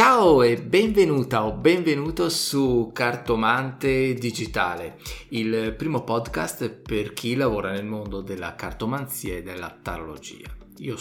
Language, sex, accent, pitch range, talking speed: Italian, male, native, 105-140 Hz, 120 wpm